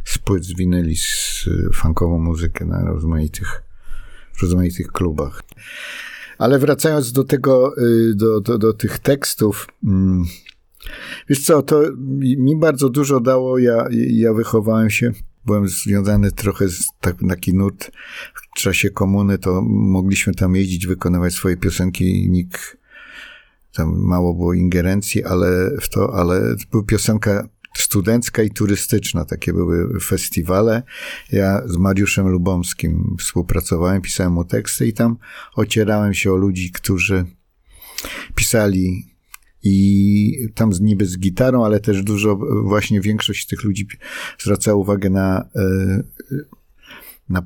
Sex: male